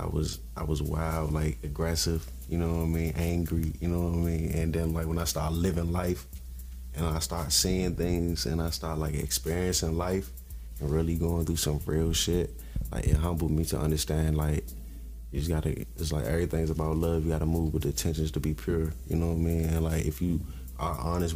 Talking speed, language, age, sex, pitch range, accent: 220 wpm, English, 20-39, male, 75-85 Hz, American